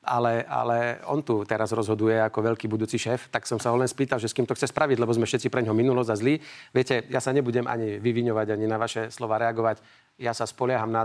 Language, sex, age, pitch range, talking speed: Slovak, male, 40-59, 110-130 Hz, 230 wpm